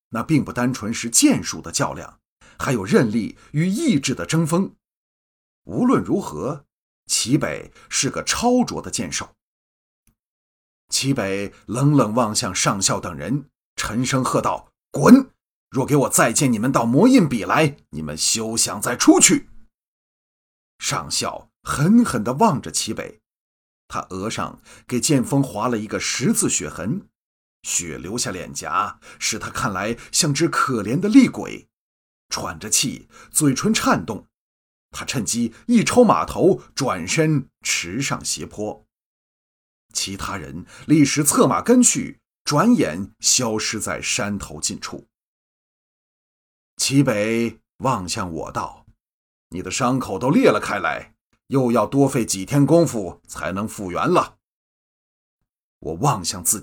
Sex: male